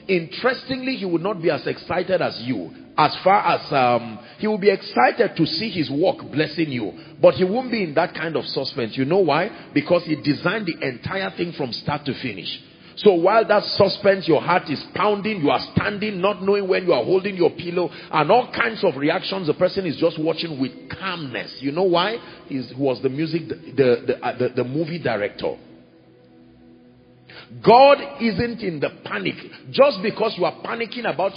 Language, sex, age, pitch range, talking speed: English, male, 40-59, 150-200 Hz, 195 wpm